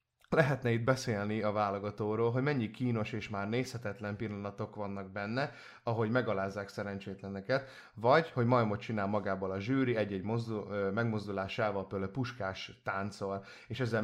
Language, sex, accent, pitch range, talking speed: English, male, Finnish, 100-125 Hz, 135 wpm